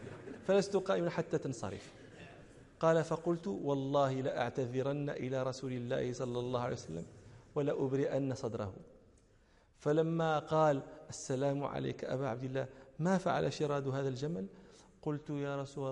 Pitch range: 120-155 Hz